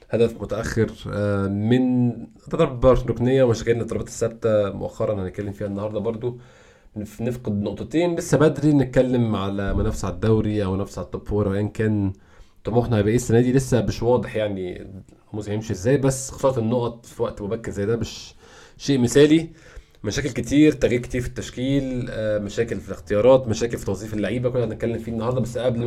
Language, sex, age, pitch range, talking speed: Arabic, male, 20-39, 100-125 Hz, 165 wpm